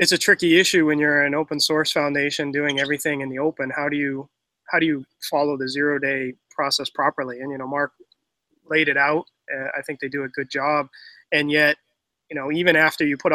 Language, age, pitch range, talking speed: English, 20-39, 135-150 Hz, 225 wpm